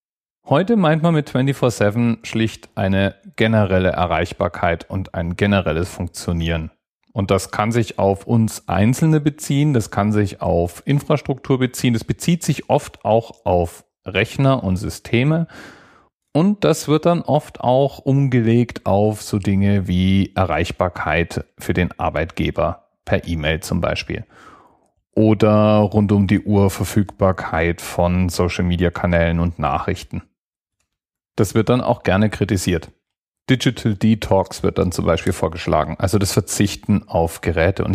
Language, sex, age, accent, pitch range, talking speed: German, male, 30-49, German, 95-120 Hz, 135 wpm